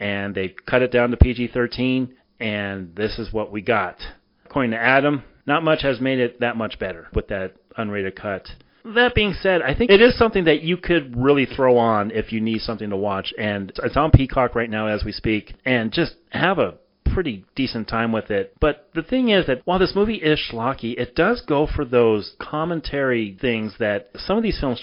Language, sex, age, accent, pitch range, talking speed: English, male, 40-59, American, 105-160 Hz, 215 wpm